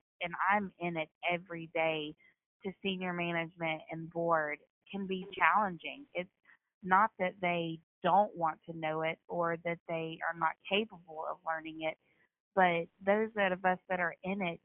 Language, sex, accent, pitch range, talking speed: English, female, American, 165-190 Hz, 165 wpm